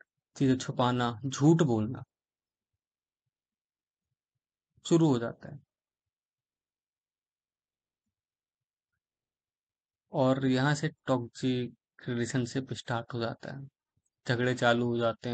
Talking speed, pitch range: 80 wpm, 120-135 Hz